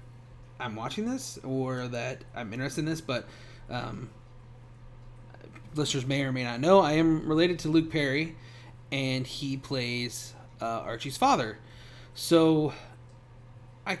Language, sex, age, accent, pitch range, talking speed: English, male, 30-49, American, 120-155 Hz, 135 wpm